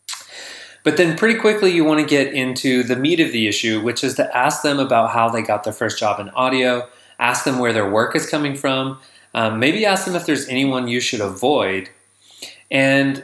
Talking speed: 215 wpm